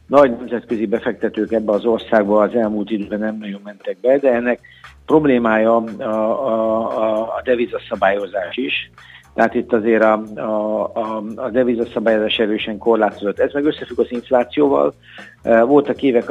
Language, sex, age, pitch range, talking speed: Hungarian, male, 60-79, 105-120 Hz, 145 wpm